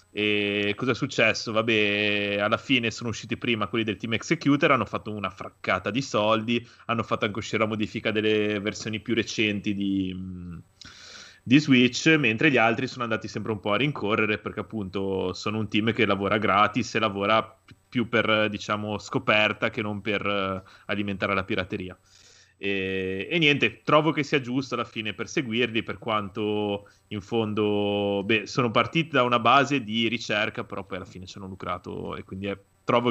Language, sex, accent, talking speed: Italian, male, native, 175 wpm